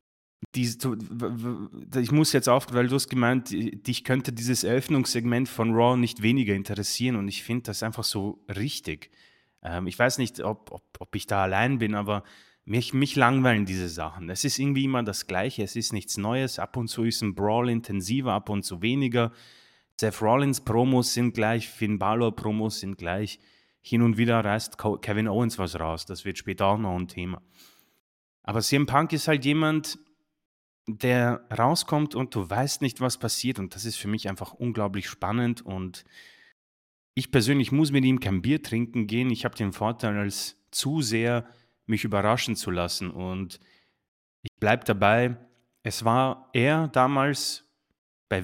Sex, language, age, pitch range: male, German, 30-49, 100-125 Hz